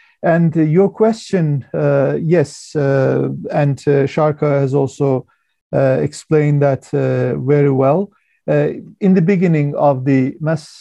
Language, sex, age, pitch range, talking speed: Slovak, male, 50-69, 140-160 Hz, 135 wpm